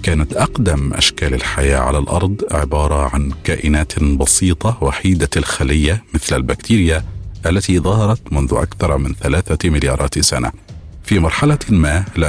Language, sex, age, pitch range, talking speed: Arabic, male, 50-69, 75-100 Hz, 125 wpm